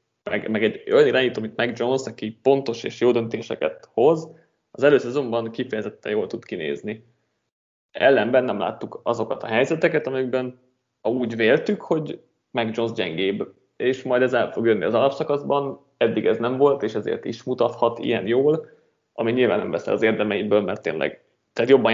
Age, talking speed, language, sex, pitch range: 20-39, 165 wpm, Hungarian, male, 115-140 Hz